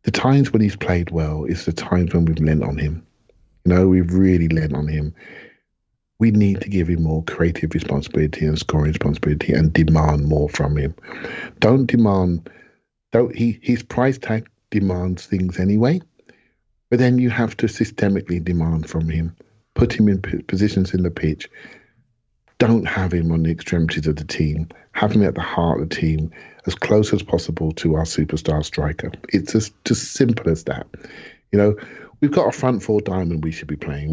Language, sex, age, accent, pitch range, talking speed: English, male, 50-69, British, 80-110 Hz, 185 wpm